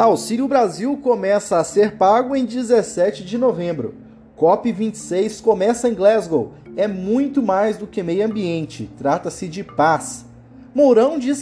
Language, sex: Portuguese, male